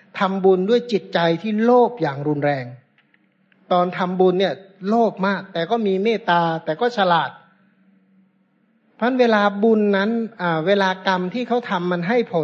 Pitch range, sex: 170-220 Hz, male